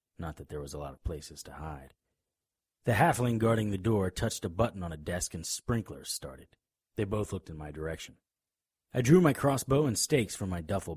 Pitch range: 80-110 Hz